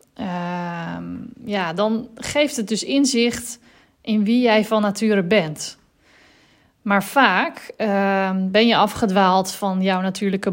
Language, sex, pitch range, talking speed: Dutch, female, 190-225 Hz, 125 wpm